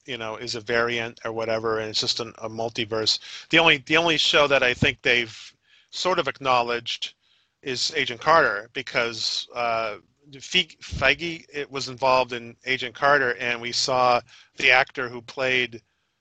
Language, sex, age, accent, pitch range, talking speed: English, male, 40-59, American, 115-135 Hz, 165 wpm